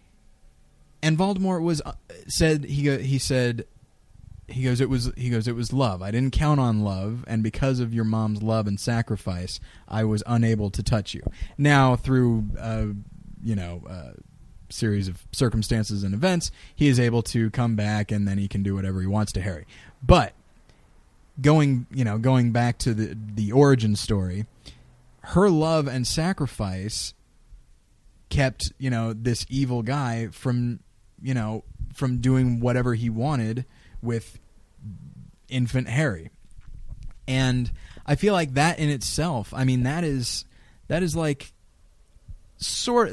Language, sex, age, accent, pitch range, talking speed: English, male, 20-39, American, 105-130 Hz, 155 wpm